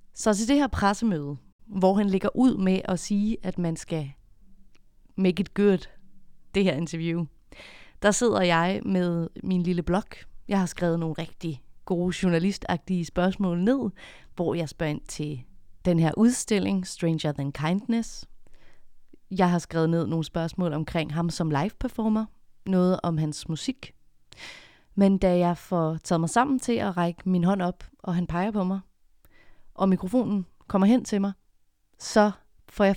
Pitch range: 165-205 Hz